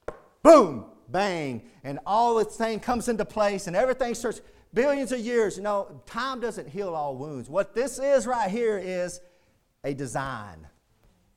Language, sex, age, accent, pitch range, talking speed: English, male, 40-59, American, 125-205 Hz, 160 wpm